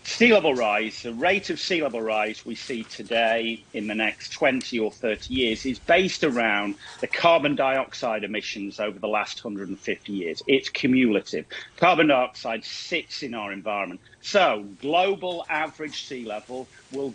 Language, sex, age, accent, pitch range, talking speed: English, male, 40-59, British, 115-170 Hz, 155 wpm